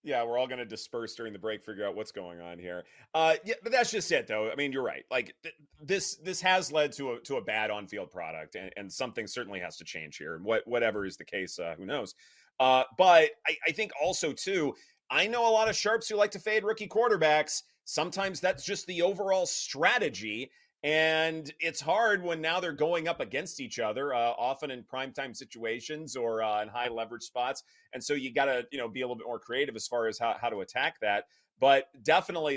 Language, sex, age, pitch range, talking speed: English, male, 30-49, 125-195 Hz, 230 wpm